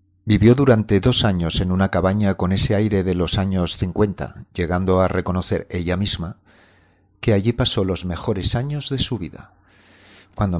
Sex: male